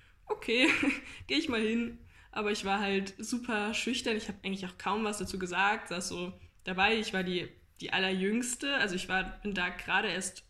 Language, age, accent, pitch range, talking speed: German, 10-29, German, 185-220 Hz, 195 wpm